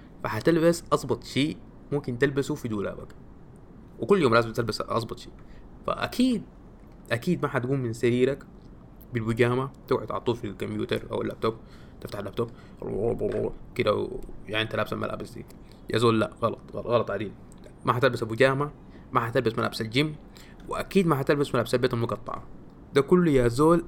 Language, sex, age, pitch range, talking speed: Arabic, male, 20-39, 115-140 Hz, 145 wpm